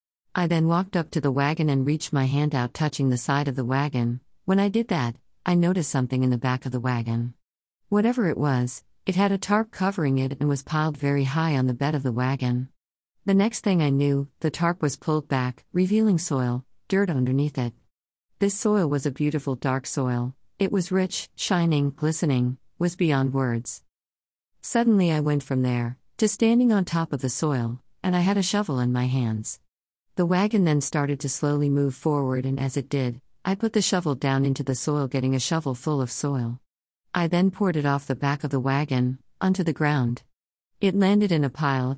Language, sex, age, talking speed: English, female, 50-69, 205 wpm